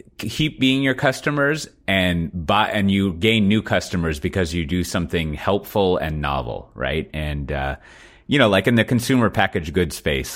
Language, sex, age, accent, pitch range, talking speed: English, male, 30-49, American, 75-100 Hz, 175 wpm